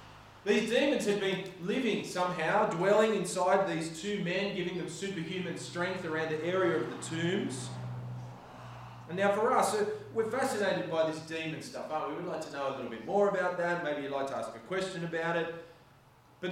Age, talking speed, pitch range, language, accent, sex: 30-49, 195 wpm, 130-190 Hz, English, Australian, male